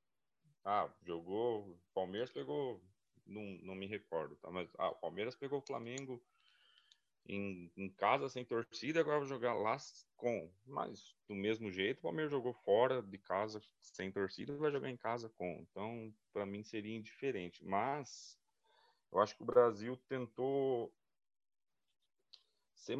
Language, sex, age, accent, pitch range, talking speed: Portuguese, male, 30-49, Brazilian, 90-130 Hz, 145 wpm